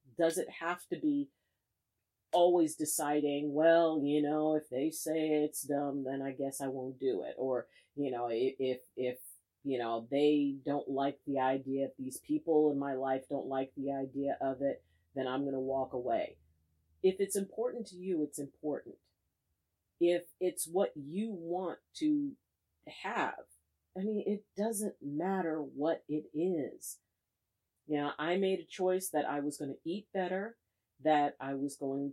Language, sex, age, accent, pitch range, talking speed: English, female, 40-59, American, 135-180 Hz, 170 wpm